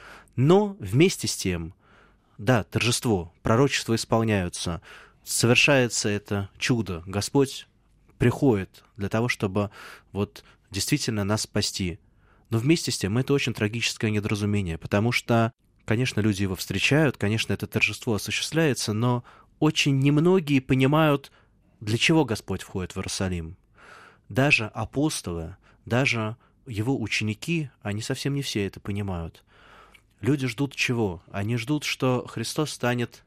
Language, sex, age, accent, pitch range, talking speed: Russian, male, 20-39, native, 100-125 Hz, 120 wpm